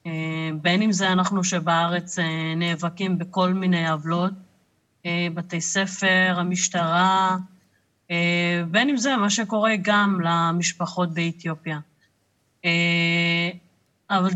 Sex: female